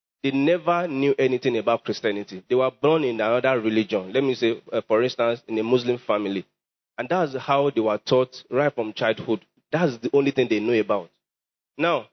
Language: English